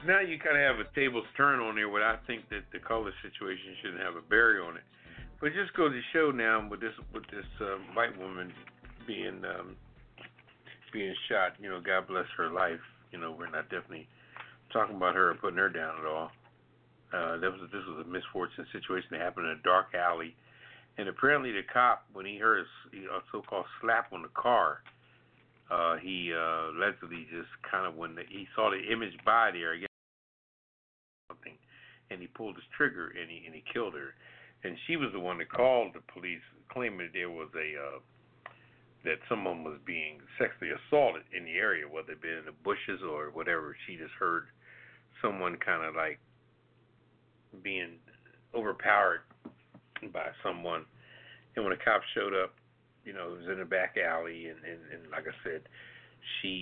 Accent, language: American, English